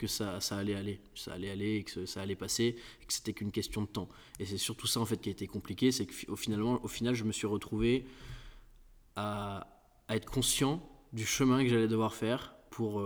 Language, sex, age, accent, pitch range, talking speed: French, male, 20-39, French, 100-120 Hz, 220 wpm